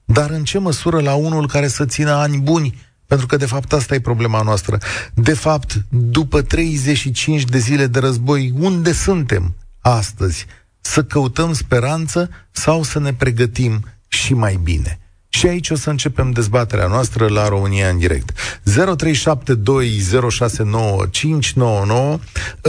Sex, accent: male, native